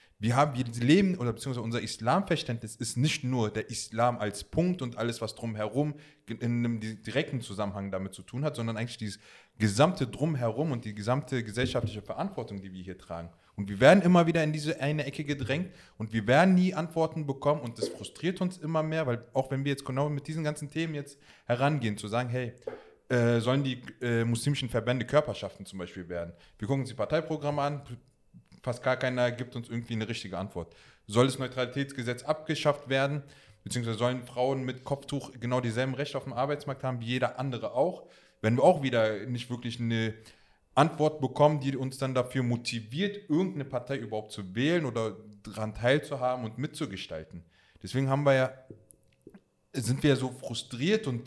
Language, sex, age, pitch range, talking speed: German, male, 20-39, 115-145 Hz, 185 wpm